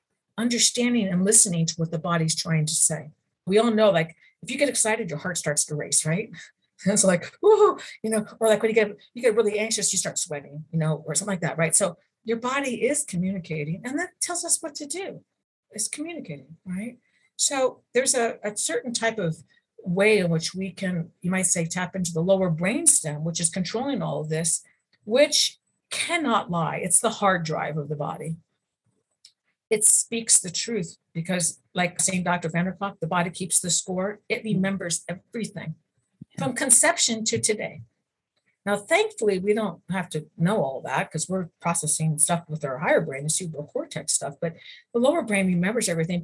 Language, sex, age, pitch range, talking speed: English, female, 40-59, 165-225 Hz, 195 wpm